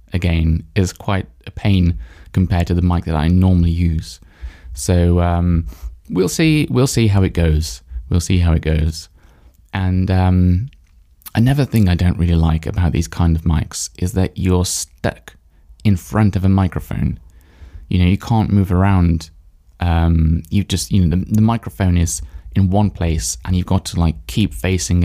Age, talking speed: 20-39, 175 wpm